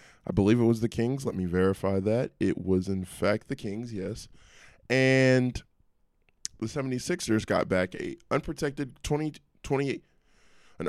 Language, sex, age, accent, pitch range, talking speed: English, male, 20-39, American, 95-125 Hz, 145 wpm